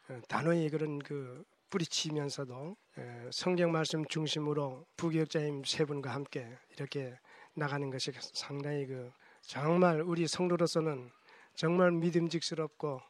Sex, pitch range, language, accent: male, 140-170 Hz, Korean, native